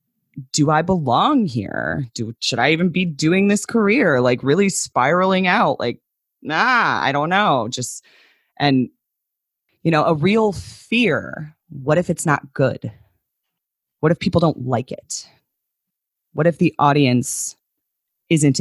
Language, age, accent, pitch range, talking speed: English, 30-49, American, 125-160 Hz, 140 wpm